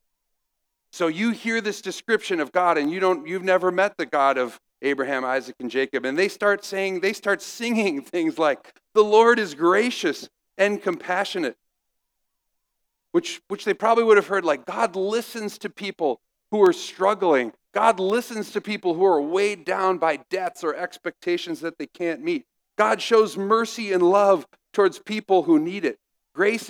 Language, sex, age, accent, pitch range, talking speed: English, male, 50-69, American, 155-220 Hz, 175 wpm